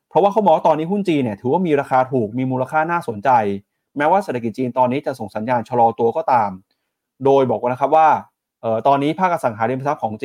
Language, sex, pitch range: Thai, male, 110-145 Hz